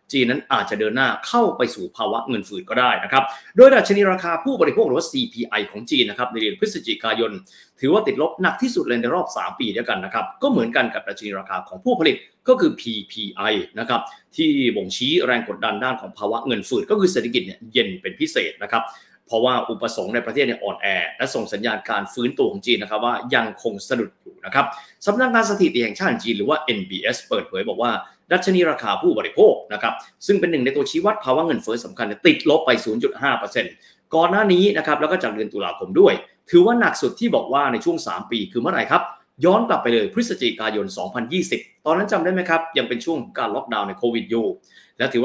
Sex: male